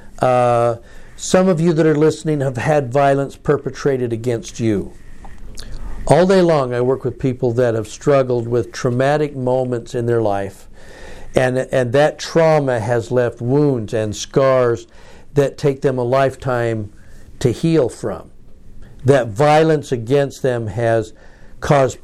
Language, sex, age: English, male, 60-79